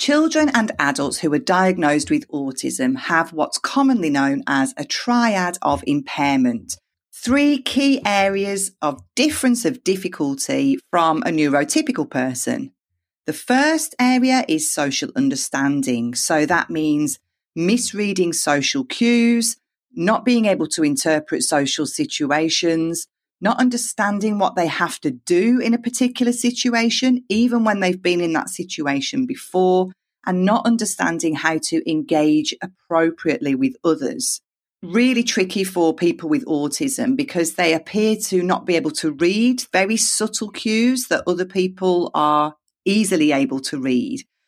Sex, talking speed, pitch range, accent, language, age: female, 135 wpm, 155-245 Hz, British, English, 40-59